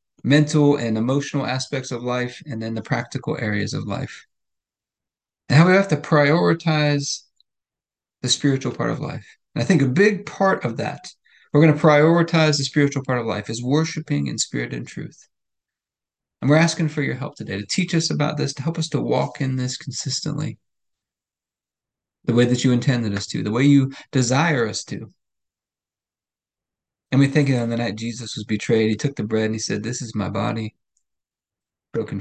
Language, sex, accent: English, male, American